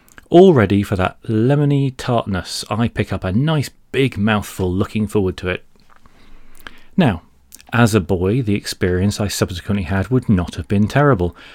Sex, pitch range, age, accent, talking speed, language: male, 95-135 Hz, 30-49, British, 155 wpm, English